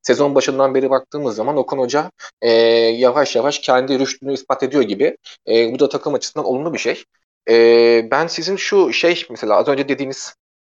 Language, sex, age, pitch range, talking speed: Turkish, male, 30-49, 130-155 Hz, 180 wpm